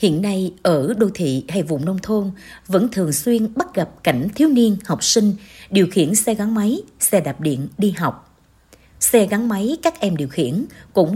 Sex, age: female, 60-79